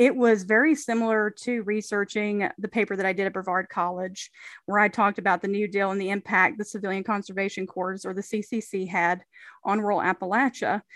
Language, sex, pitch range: English, female, 195-220 Hz